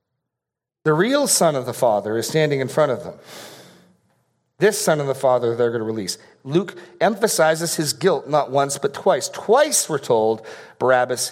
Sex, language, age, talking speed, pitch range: male, English, 40-59, 175 wpm, 115-170 Hz